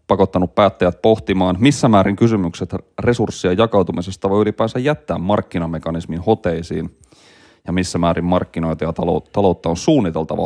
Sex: male